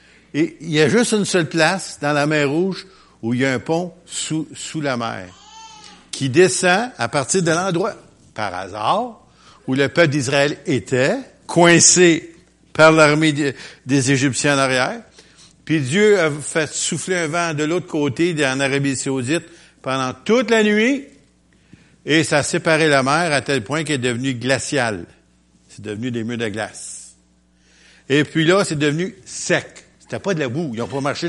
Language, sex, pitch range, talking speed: French, male, 120-170 Hz, 180 wpm